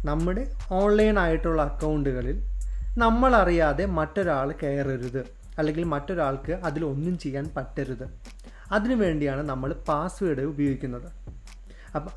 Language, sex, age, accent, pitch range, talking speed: Malayalam, male, 30-49, native, 130-180 Hz, 95 wpm